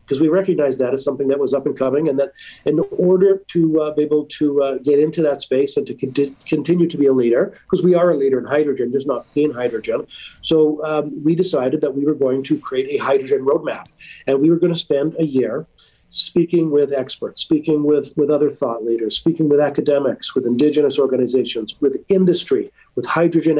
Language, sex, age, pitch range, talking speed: English, male, 40-59, 135-160 Hz, 210 wpm